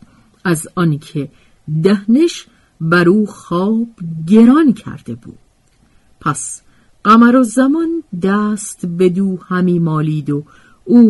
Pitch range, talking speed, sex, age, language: 150-220 Hz, 110 wpm, female, 50-69, Persian